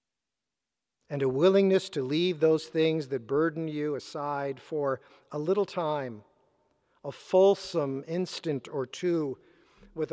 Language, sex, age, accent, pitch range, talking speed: English, male, 50-69, American, 140-195 Hz, 125 wpm